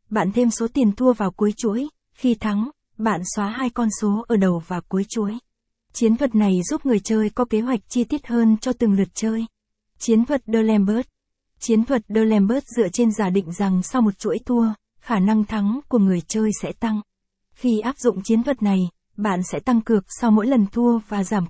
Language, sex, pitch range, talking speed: Vietnamese, female, 205-235 Hz, 210 wpm